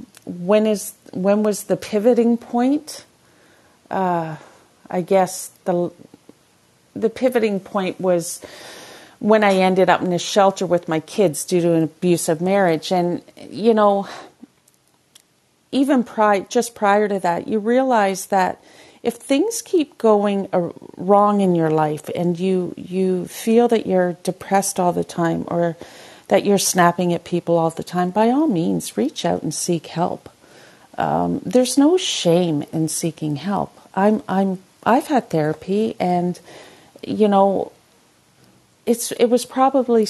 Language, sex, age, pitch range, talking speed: English, female, 40-59, 175-220 Hz, 145 wpm